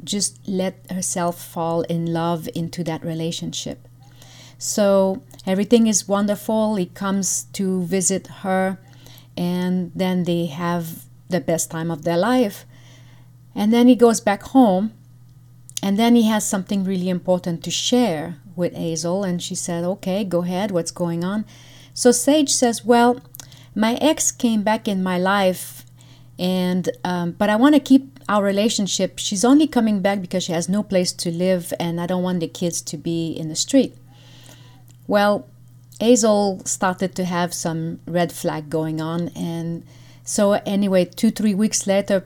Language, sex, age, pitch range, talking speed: English, female, 40-59, 160-205 Hz, 160 wpm